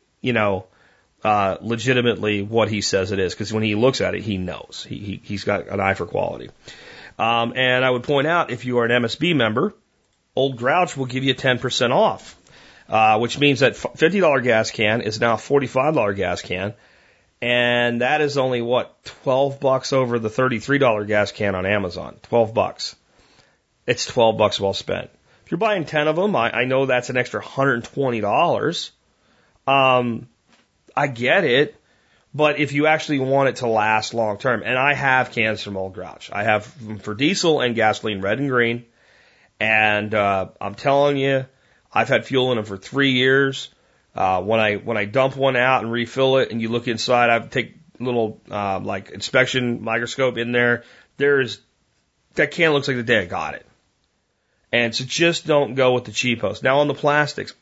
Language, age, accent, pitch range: French, 40-59, American, 110-135 Hz